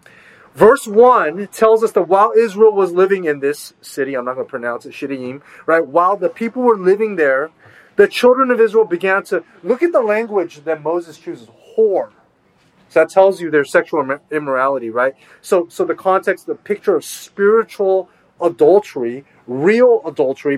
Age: 30-49